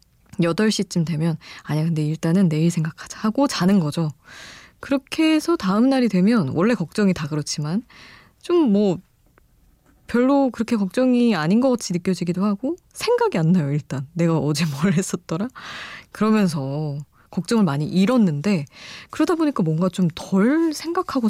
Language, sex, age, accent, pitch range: Korean, female, 20-39, native, 155-215 Hz